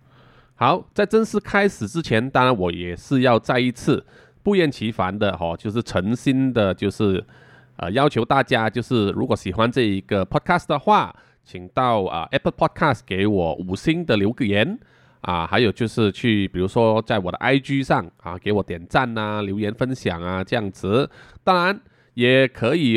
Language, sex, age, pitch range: Chinese, male, 20-39, 100-135 Hz